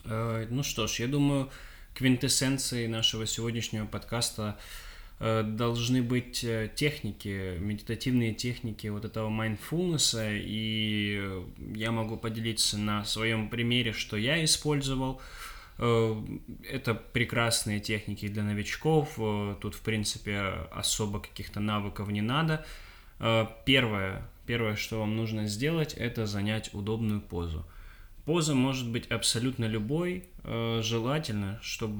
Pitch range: 105-120 Hz